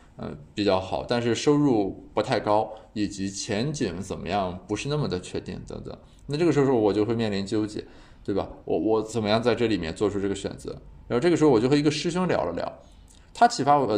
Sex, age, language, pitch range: male, 20-39, Chinese, 100-140 Hz